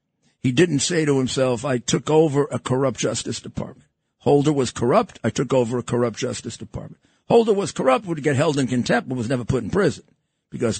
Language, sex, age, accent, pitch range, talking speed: English, male, 50-69, American, 125-175 Hz, 205 wpm